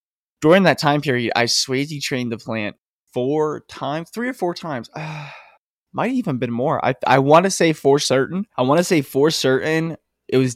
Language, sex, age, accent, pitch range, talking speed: English, male, 20-39, American, 115-140 Hz, 200 wpm